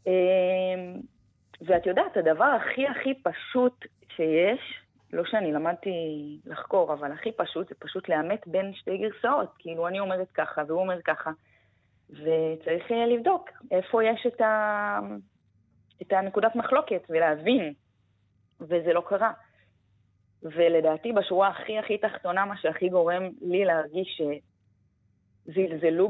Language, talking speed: Hebrew, 120 wpm